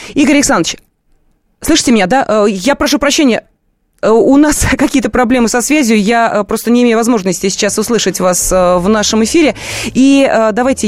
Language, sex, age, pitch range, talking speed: Russian, female, 20-39, 190-245 Hz, 155 wpm